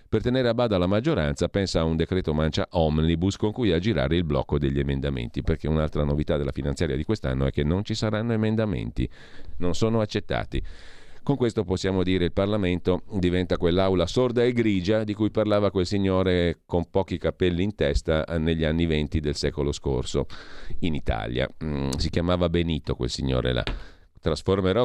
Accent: native